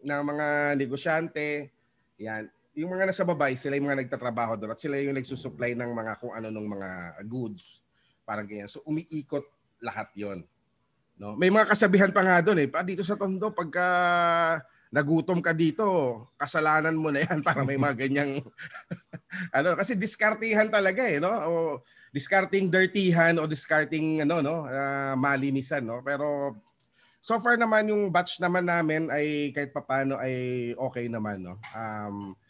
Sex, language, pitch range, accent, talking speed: male, English, 130-170 Hz, Filipino, 160 wpm